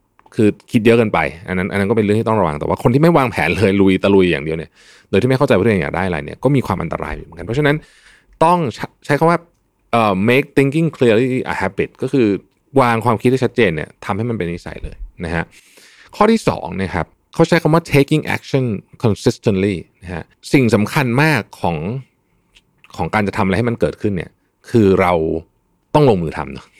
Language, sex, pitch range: Thai, male, 90-125 Hz